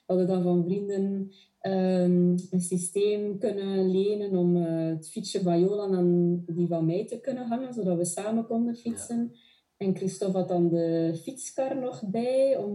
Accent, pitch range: Swiss, 180-230 Hz